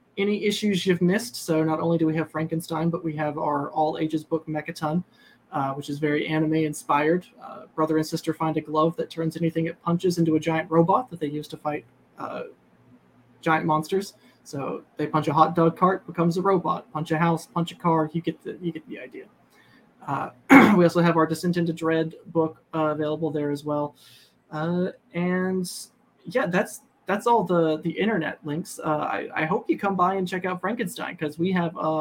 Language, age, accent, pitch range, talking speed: English, 20-39, American, 155-175 Hz, 200 wpm